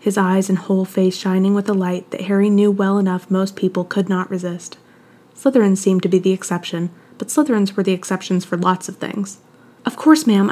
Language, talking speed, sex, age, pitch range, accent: English, 210 wpm, female, 20-39, 185-210 Hz, American